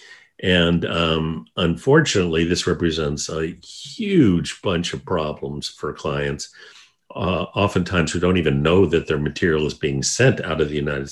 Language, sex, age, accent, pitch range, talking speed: English, male, 50-69, American, 85-105 Hz, 150 wpm